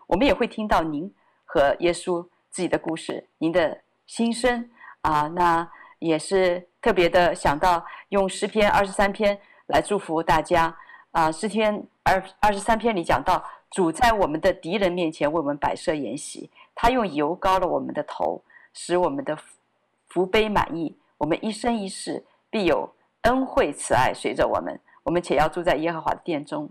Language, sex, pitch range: Chinese, female, 165-220 Hz